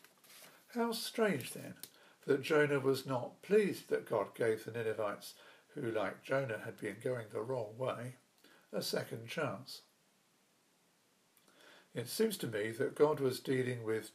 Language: English